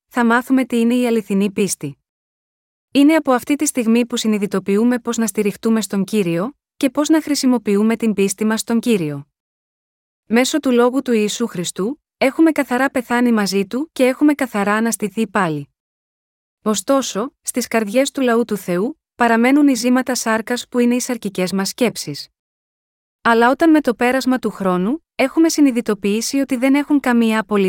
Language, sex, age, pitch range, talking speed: Greek, female, 20-39, 210-260 Hz, 160 wpm